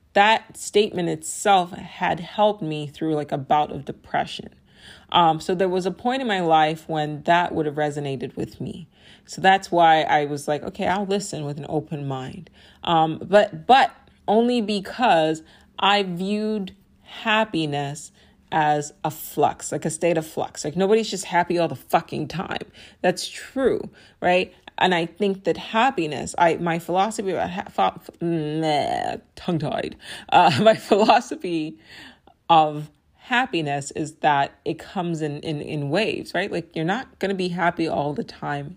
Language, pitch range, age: English, 150-195 Hz, 30-49